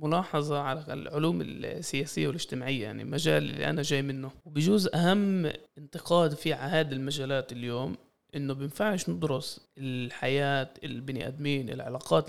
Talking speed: 120 wpm